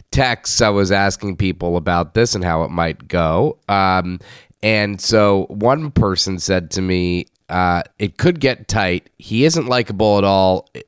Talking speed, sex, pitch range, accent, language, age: 165 wpm, male, 90-110 Hz, American, English, 30-49